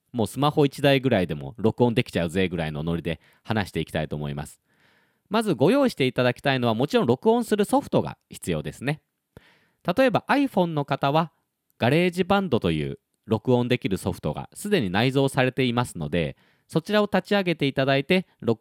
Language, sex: Japanese, male